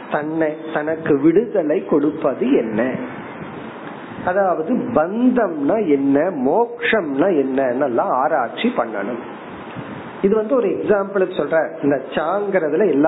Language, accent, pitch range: Tamil, native, 145-215 Hz